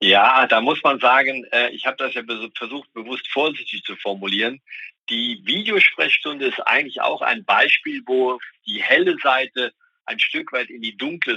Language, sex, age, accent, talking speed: German, male, 50-69, German, 165 wpm